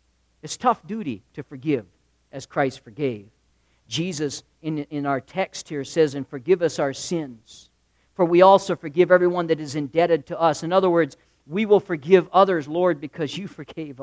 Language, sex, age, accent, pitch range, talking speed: English, male, 50-69, American, 130-190 Hz, 175 wpm